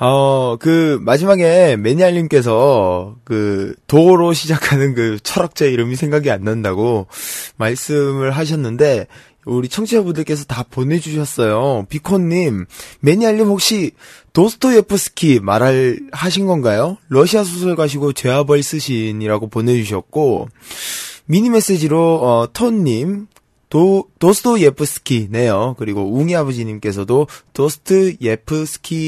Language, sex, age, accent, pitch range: Korean, male, 20-39, native, 115-165 Hz